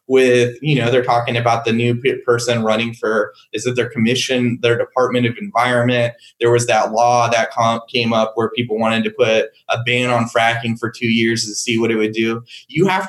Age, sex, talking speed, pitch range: 20-39, male, 210 wpm, 115-140 Hz